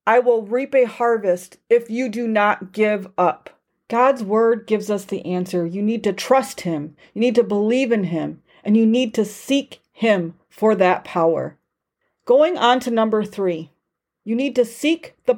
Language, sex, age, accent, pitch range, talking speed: English, female, 40-59, American, 205-265 Hz, 185 wpm